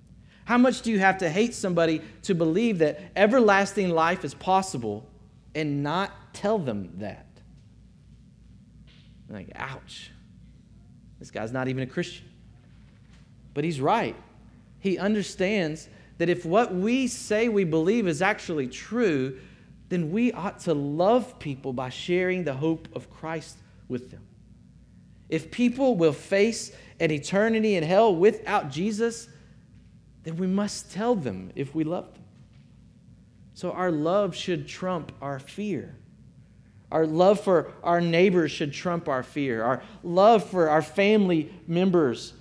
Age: 40-59